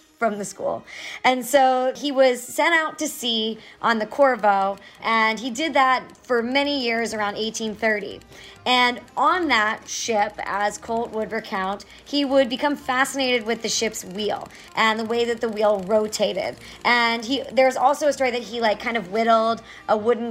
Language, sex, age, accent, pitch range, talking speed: English, male, 30-49, American, 210-250 Hz, 175 wpm